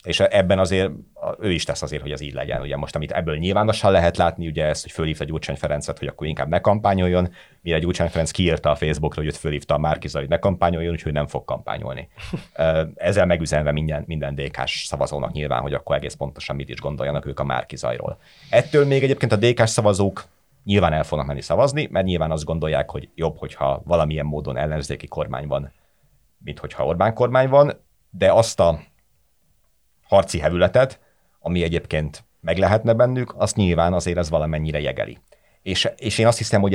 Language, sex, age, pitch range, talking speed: Hungarian, male, 30-49, 75-95 Hz, 180 wpm